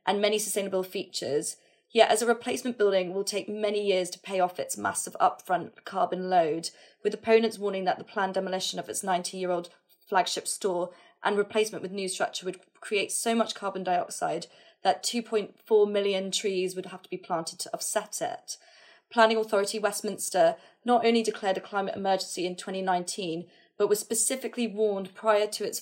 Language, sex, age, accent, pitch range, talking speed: English, female, 20-39, British, 185-225 Hz, 170 wpm